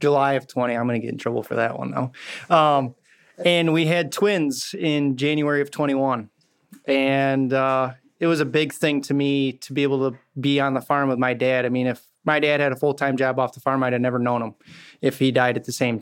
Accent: American